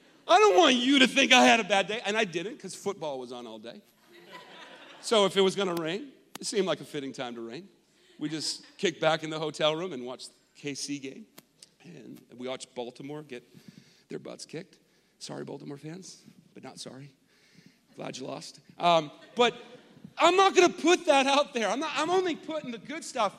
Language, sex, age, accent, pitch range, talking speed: English, male, 40-59, American, 185-280 Hz, 215 wpm